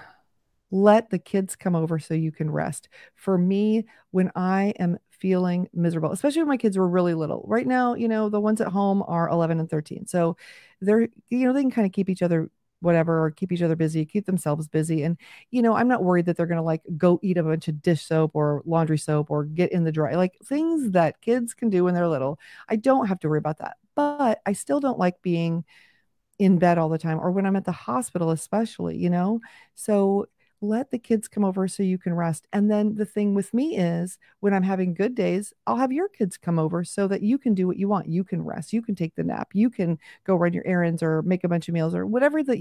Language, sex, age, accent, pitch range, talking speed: English, female, 40-59, American, 170-215 Hz, 250 wpm